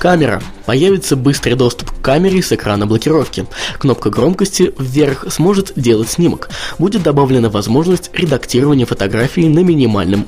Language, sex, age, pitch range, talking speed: Russian, male, 20-39, 110-165 Hz, 130 wpm